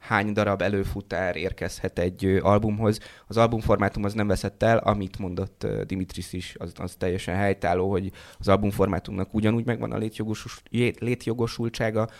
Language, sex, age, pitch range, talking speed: Hungarian, male, 20-39, 95-110 Hz, 135 wpm